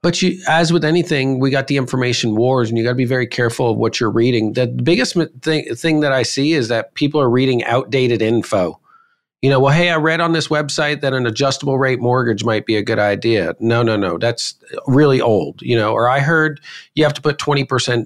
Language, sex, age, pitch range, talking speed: English, male, 40-59, 115-145 Hz, 225 wpm